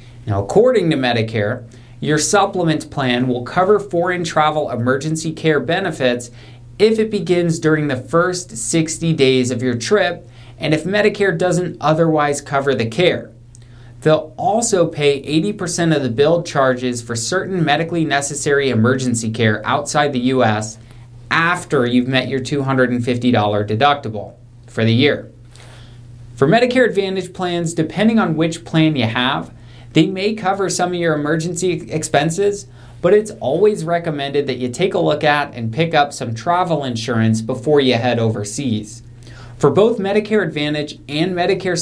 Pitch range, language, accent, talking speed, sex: 120-175 Hz, English, American, 150 wpm, male